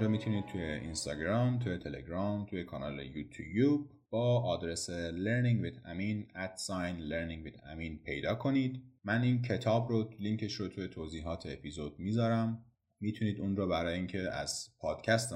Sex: male